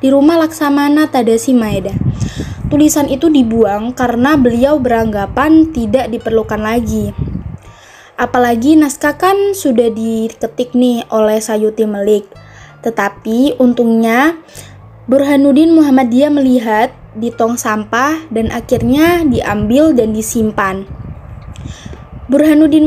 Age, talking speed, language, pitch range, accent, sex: 20-39, 95 wpm, Indonesian, 230-285 Hz, native, female